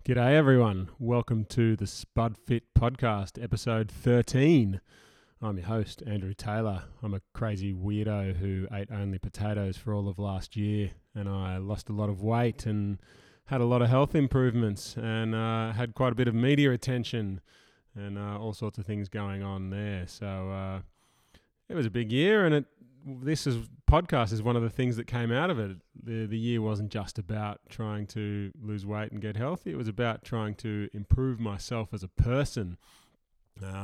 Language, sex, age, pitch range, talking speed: English, male, 20-39, 100-120 Hz, 190 wpm